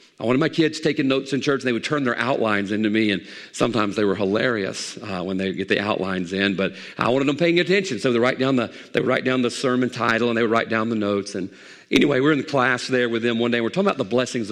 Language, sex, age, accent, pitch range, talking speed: English, male, 40-59, American, 120-180 Hz, 295 wpm